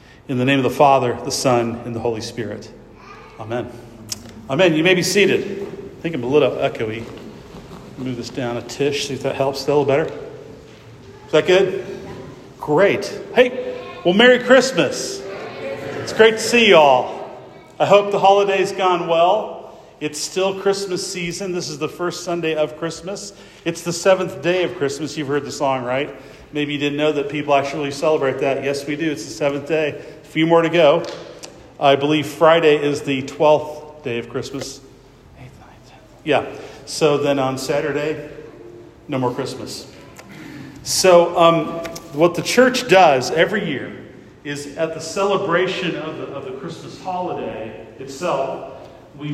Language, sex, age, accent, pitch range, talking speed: English, male, 40-59, American, 135-175 Hz, 165 wpm